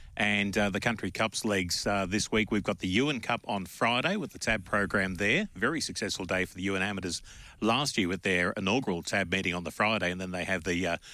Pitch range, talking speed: 95-115 Hz, 235 wpm